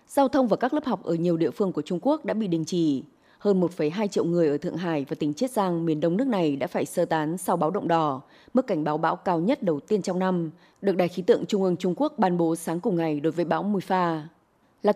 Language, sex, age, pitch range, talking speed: Vietnamese, female, 20-39, 165-215 Hz, 275 wpm